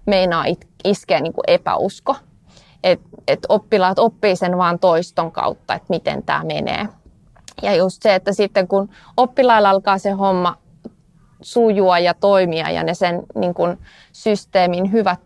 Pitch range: 175-205 Hz